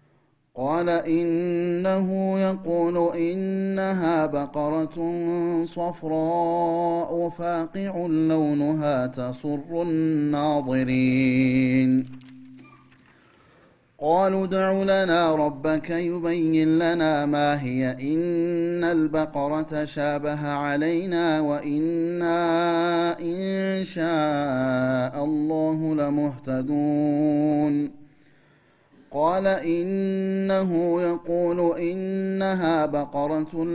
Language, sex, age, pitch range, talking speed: Amharic, male, 30-49, 145-170 Hz, 55 wpm